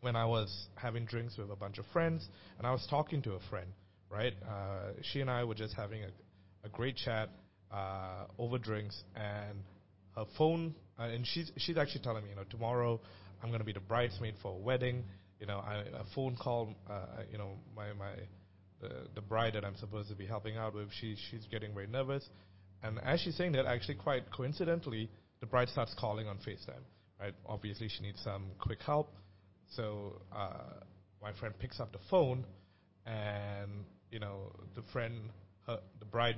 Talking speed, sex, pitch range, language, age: 190 wpm, male, 100-120 Hz, English, 30-49